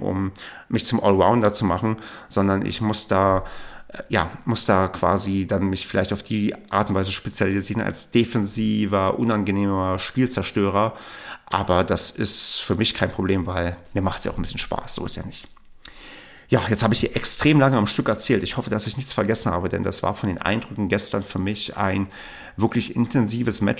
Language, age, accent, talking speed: German, 40-59, German, 195 wpm